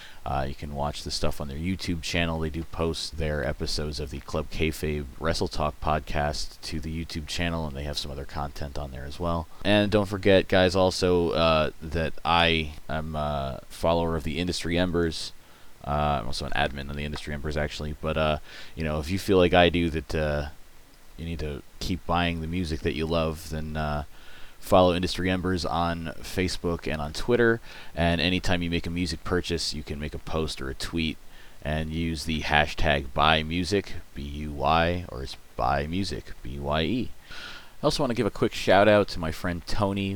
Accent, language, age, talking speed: American, English, 20-39, 195 wpm